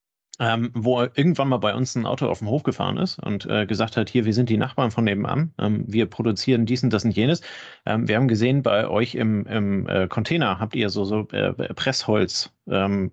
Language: German